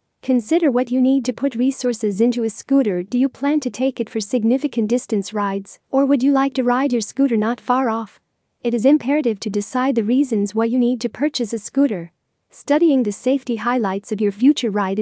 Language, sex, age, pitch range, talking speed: English, female, 40-59, 220-260 Hz, 210 wpm